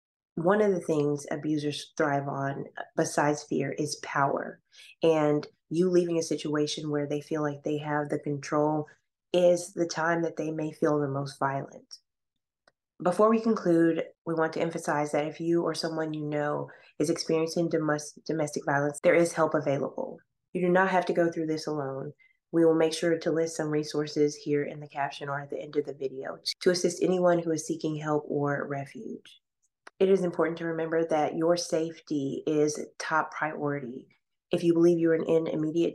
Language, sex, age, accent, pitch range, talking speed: English, female, 20-39, American, 150-165 Hz, 185 wpm